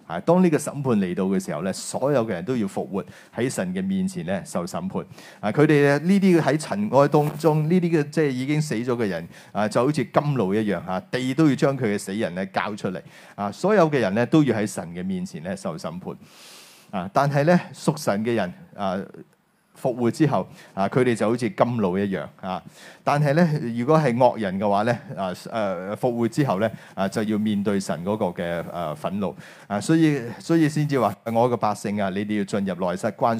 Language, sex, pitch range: Chinese, male, 105-170 Hz